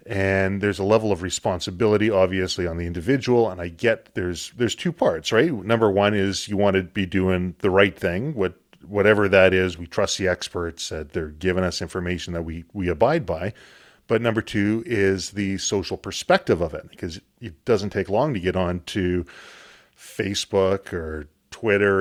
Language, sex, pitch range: English, male, 90-110 Hz